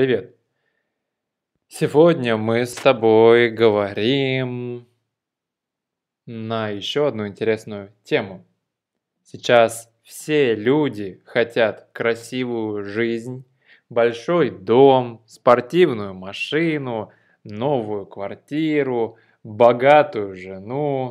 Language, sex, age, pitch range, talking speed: Russian, male, 20-39, 115-145 Hz, 70 wpm